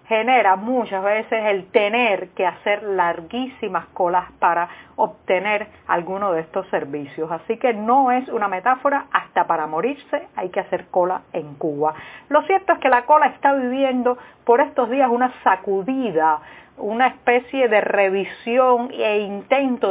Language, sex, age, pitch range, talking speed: Spanish, female, 40-59, 185-245 Hz, 150 wpm